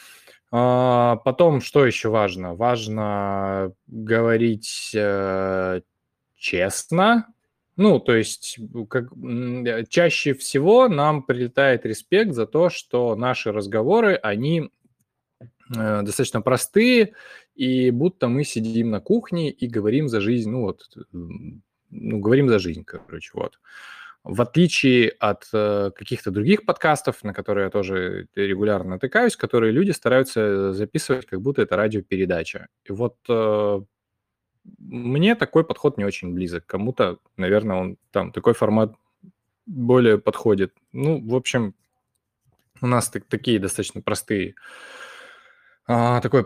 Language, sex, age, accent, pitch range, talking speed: Russian, male, 20-39, native, 105-135 Hz, 120 wpm